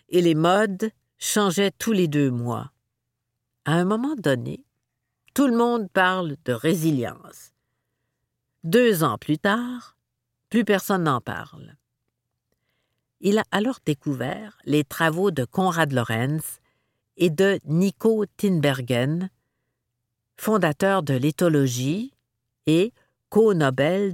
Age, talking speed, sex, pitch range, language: 50-69, 110 wpm, female, 125-185 Hz, French